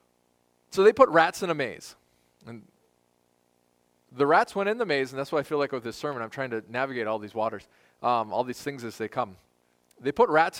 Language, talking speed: English, 225 wpm